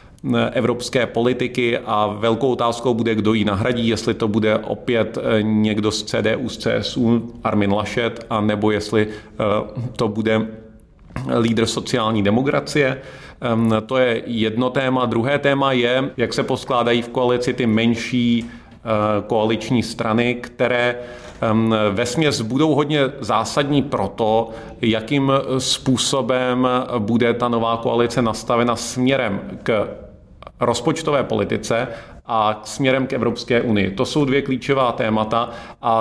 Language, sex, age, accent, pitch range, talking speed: Czech, male, 30-49, native, 115-130 Hz, 125 wpm